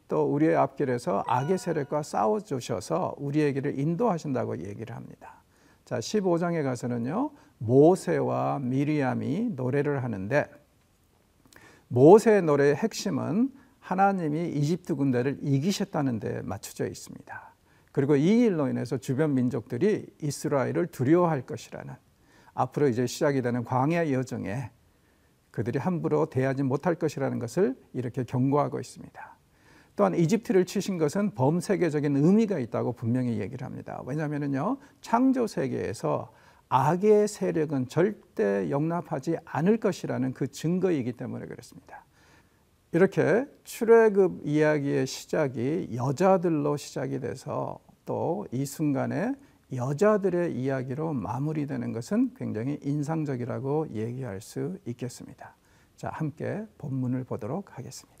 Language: Korean